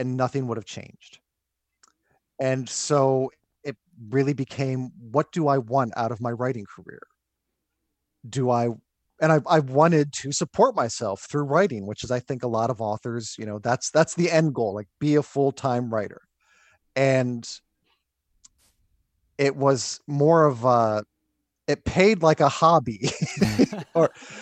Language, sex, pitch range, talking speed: English, male, 115-150 Hz, 150 wpm